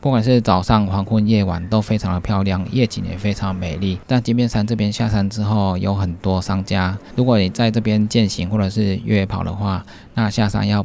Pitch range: 95-110 Hz